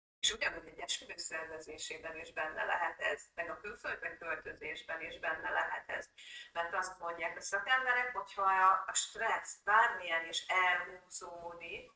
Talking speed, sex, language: 130 wpm, female, Hungarian